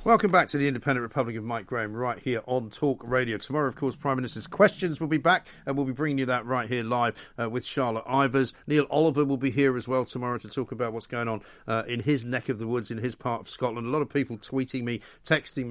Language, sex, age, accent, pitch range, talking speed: English, male, 50-69, British, 120-155 Hz, 265 wpm